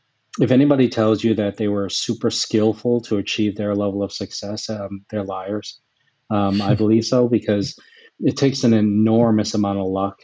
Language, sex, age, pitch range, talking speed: English, male, 30-49, 100-115 Hz, 175 wpm